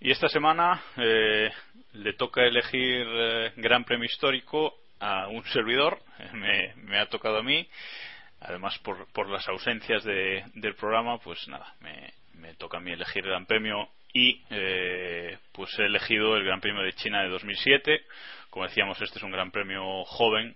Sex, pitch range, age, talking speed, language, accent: male, 95-125 Hz, 20-39, 170 wpm, Spanish, Spanish